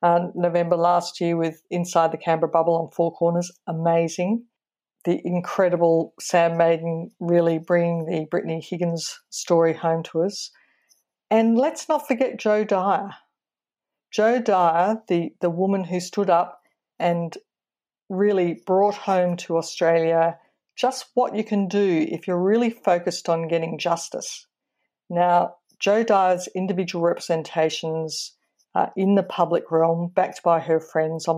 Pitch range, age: 165-200 Hz, 50-69